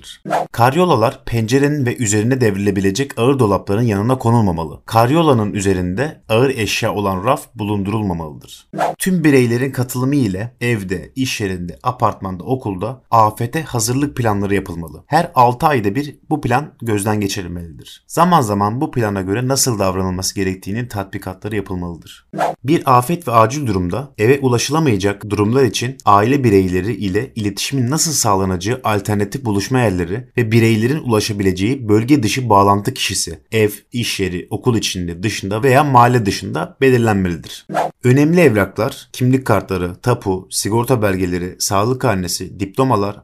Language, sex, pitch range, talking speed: Turkish, male, 100-130 Hz, 125 wpm